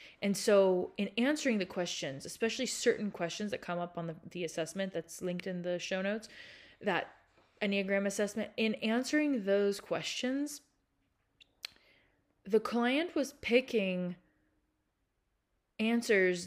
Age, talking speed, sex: 20-39, 125 wpm, female